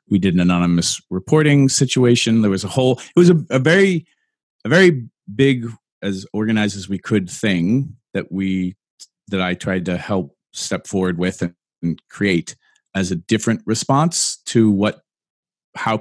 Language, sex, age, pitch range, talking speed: English, male, 40-59, 90-115 Hz, 165 wpm